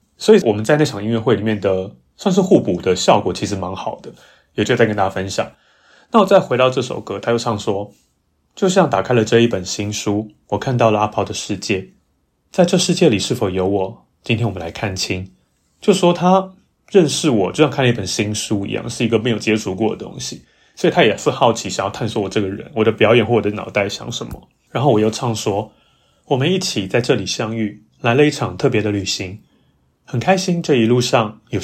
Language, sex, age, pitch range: Chinese, male, 30-49, 105-130 Hz